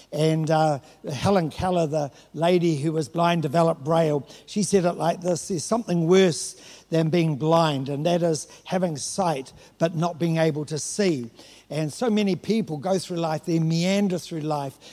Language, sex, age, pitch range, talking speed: English, male, 60-79, 155-190 Hz, 175 wpm